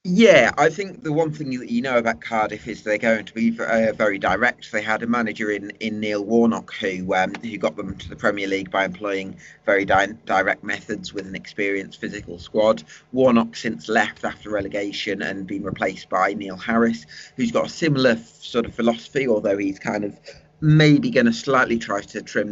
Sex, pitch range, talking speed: male, 100-115 Hz, 195 wpm